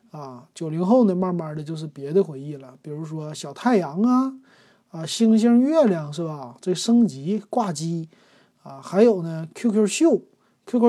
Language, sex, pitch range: Chinese, male, 155-215 Hz